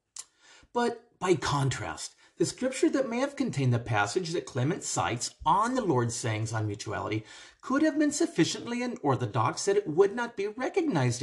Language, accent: English, American